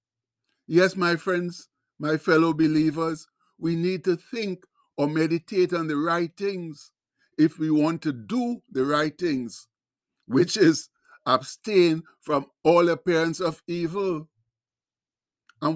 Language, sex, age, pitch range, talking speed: English, male, 60-79, 145-175 Hz, 125 wpm